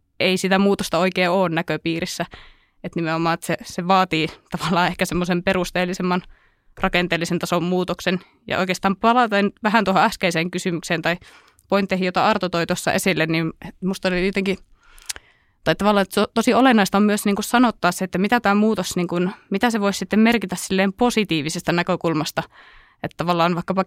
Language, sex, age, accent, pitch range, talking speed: Finnish, female, 20-39, native, 170-195 Hz, 160 wpm